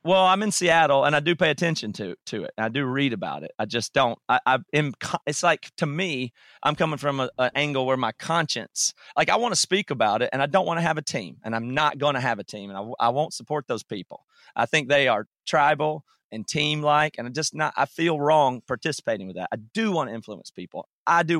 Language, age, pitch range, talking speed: English, 30-49, 120-160 Hz, 260 wpm